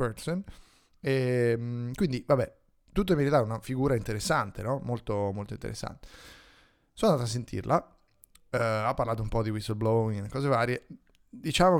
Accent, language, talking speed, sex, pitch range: native, Italian, 155 wpm, male, 105-125 Hz